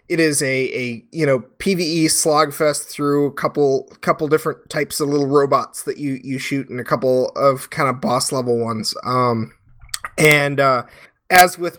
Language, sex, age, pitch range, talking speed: English, male, 20-39, 125-155 Hz, 175 wpm